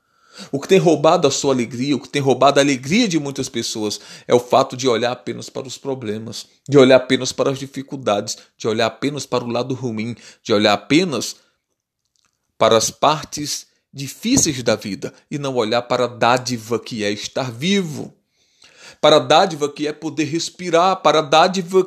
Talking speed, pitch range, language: 185 wpm, 120-185 Hz, Portuguese